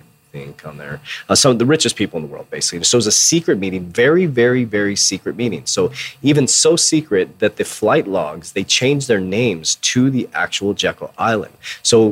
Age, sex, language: 30-49, male, English